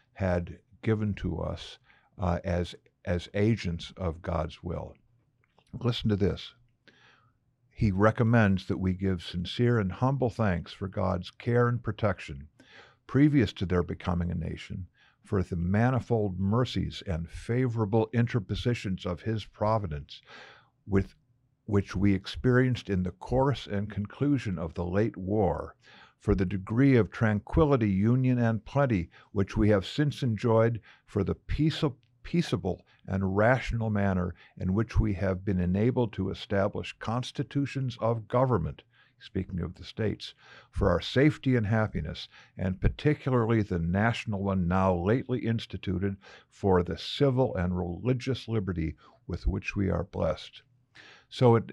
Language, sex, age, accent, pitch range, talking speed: English, male, 50-69, American, 95-120 Hz, 135 wpm